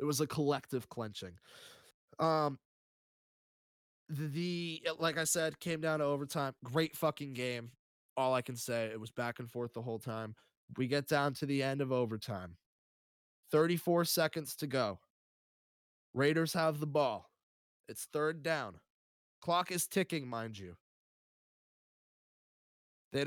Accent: American